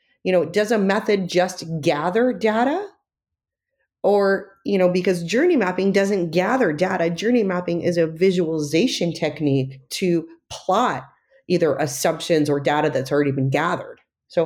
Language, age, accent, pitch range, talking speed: English, 30-49, American, 155-205 Hz, 140 wpm